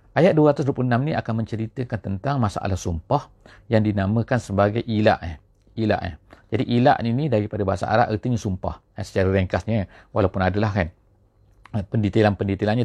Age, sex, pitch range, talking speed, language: 40-59, male, 100-120 Hz, 120 wpm, English